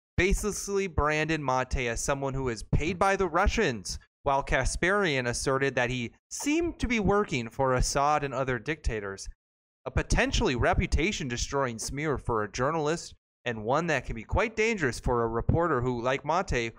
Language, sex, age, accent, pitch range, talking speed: English, male, 30-49, American, 115-165 Hz, 160 wpm